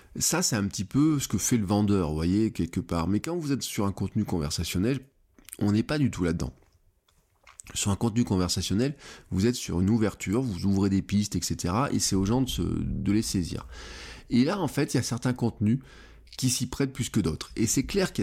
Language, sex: French, male